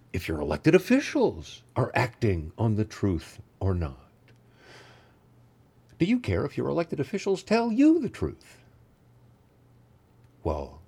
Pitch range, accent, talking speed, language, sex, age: 105-150 Hz, American, 125 wpm, English, male, 60-79